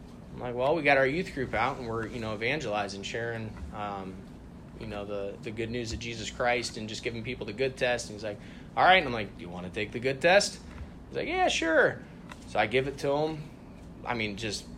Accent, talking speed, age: American, 250 wpm, 20-39